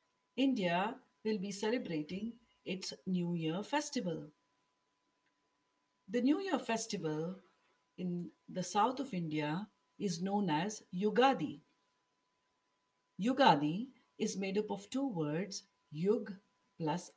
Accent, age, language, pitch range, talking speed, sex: Indian, 50-69, English, 175-240 Hz, 105 wpm, female